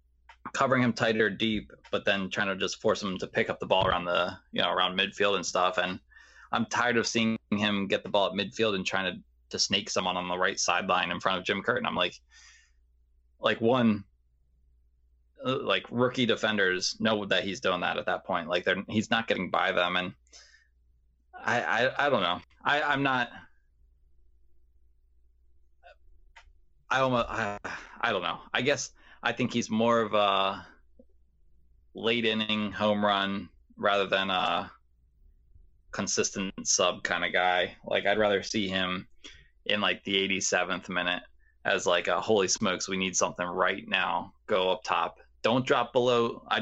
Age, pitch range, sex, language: 20-39, 65-110 Hz, male, English